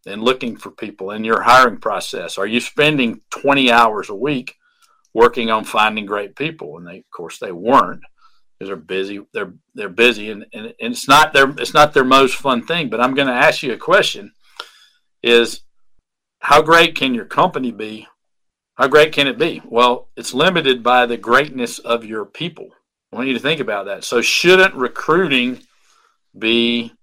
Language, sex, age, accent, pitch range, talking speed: English, male, 50-69, American, 115-150 Hz, 185 wpm